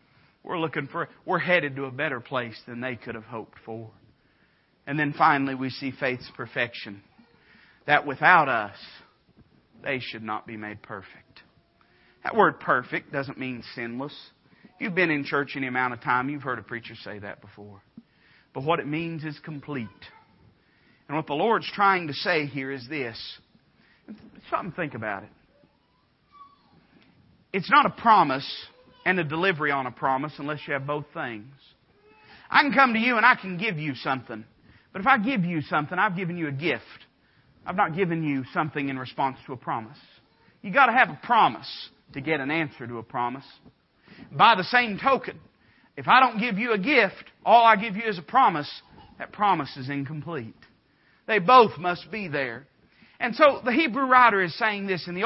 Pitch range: 130-190 Hz